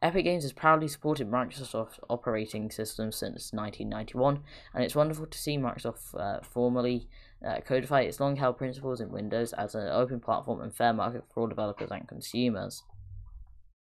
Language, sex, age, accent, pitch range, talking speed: English, female, 10-29, British, 110-140 Hz, 160 wpm